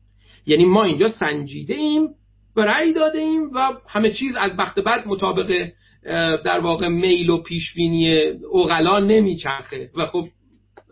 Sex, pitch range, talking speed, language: male, 160-240 Hz, 130 wpm, Persian